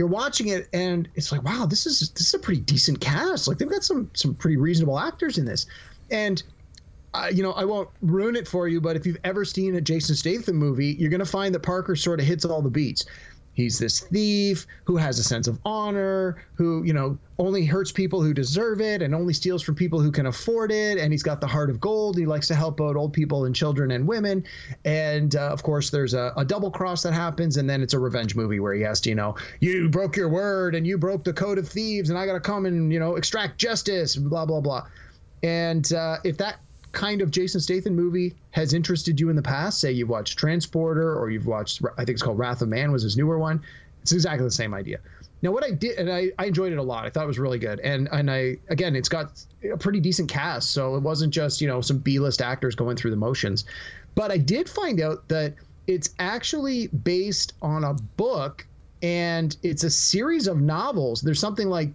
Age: 30-49